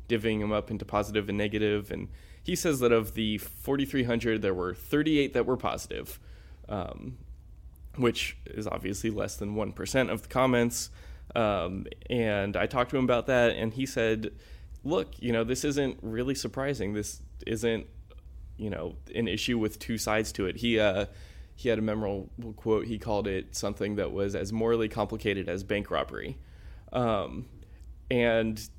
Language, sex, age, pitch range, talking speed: English, male, 20-39, 100-120 Hz, 170 wpm